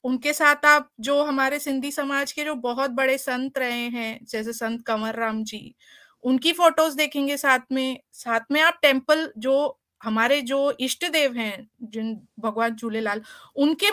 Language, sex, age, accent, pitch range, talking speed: English, female, 30-49, Indian, 250-305 Hz, 160 wpm